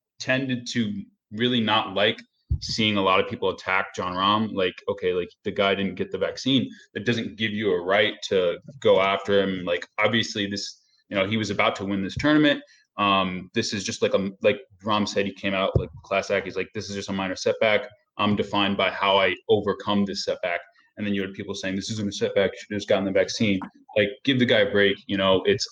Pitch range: 100-125 Hz